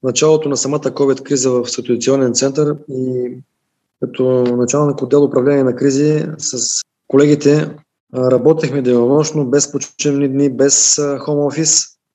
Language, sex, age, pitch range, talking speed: Bulgarian, male, 20-39, 130-160 Hz, 125 wpm